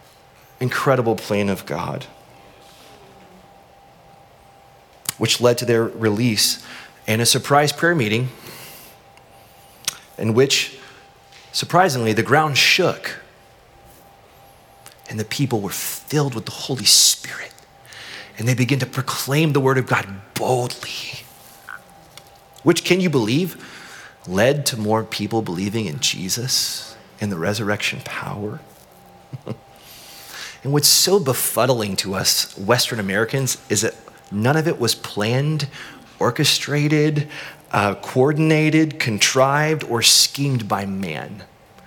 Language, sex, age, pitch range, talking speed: English, male, 30-49, 110-140 Hz, 110 wpm